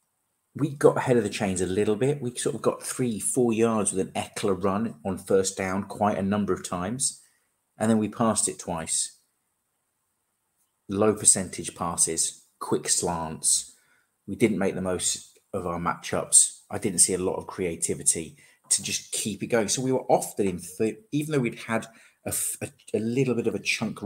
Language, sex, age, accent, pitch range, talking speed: English, male, 30-49, British, 95-125 Hz, 190 wpm